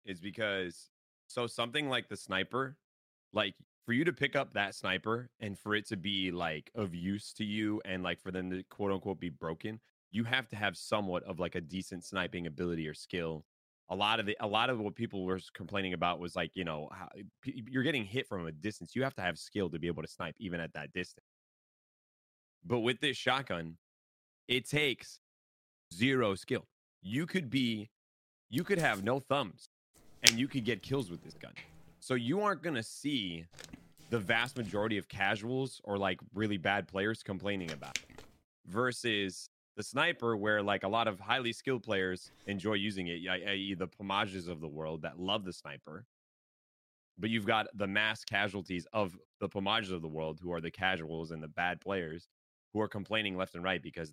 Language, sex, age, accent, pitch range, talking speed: English, male, 30-49, American, 85-110 Hz, 195 wpm